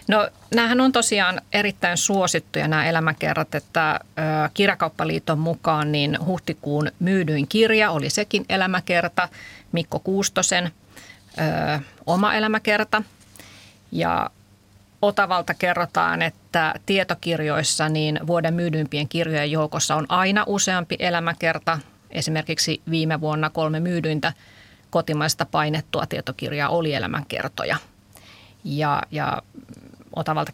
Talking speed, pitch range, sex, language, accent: 95 wpm, 150-175 Hz, female, Finnish, native